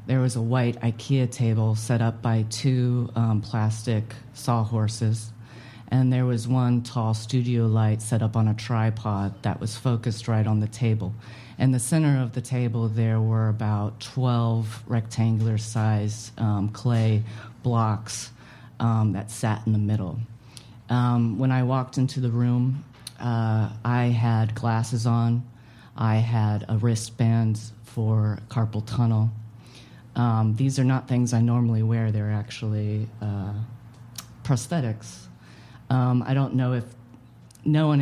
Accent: American